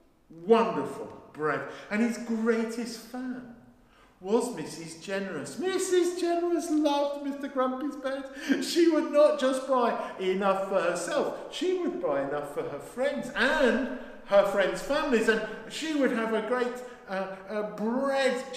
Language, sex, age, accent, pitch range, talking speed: English, male, 50-69, British, 160-260 Hz, 140 wpm